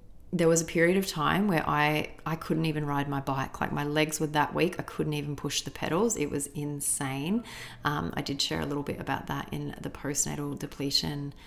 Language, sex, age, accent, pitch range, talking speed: English, female, 30-49, Australian, 145-165 Hz, 220 wpm